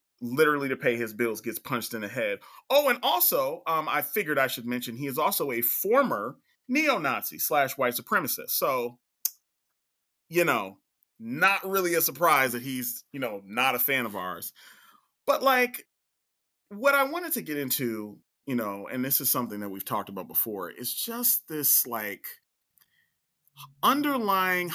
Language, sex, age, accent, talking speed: English, male, 30-49, American, 165 wpm